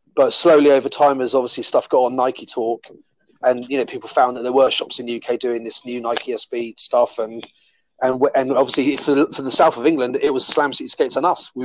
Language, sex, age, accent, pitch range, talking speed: English, male, 30-49, British, 125-150 Hz, 245 wpm